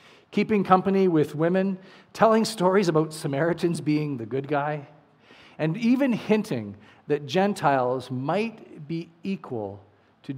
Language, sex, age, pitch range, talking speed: English, male, 40-59, 135-185 Hz, 120 wpm